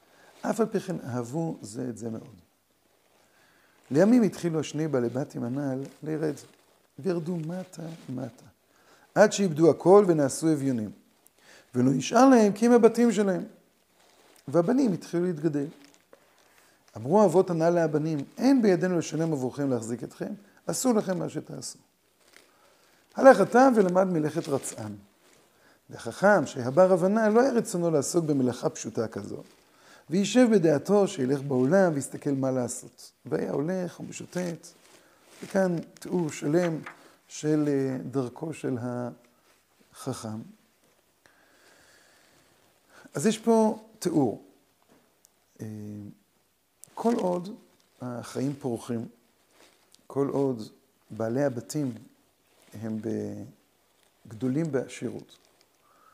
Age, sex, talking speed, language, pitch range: 50-69, male, 85 wpm, Hebrew, 130-185 Hz